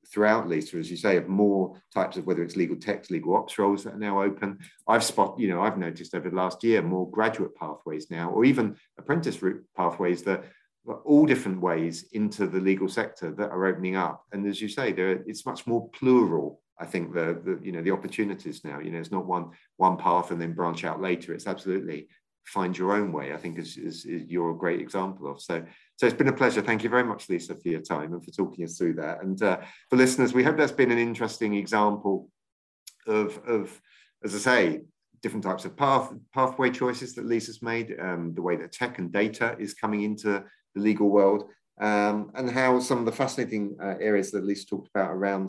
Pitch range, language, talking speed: 90-125 Hz, English, 225 wpm